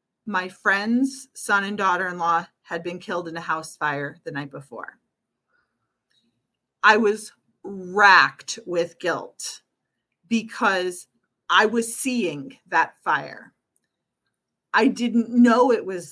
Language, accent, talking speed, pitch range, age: English, American, 115 wpm, 190-250 Hz, 40-59